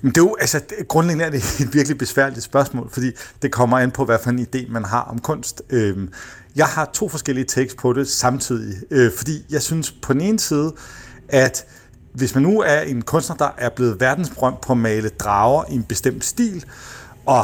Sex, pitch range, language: male, 115-140 Hz, Danish